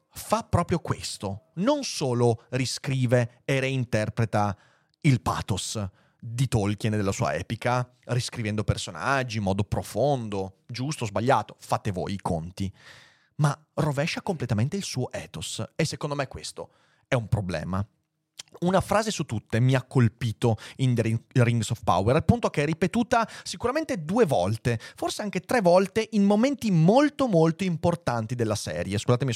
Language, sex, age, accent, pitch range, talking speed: Italian, male, 30-49, native, 110-160 Hz, 150 wpm